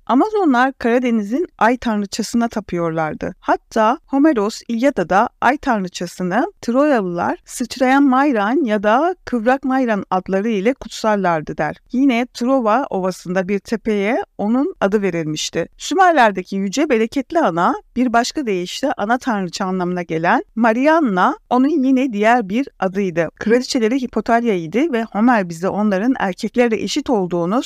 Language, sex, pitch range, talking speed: Turkish, female, 200-260 Hz, 120 wpm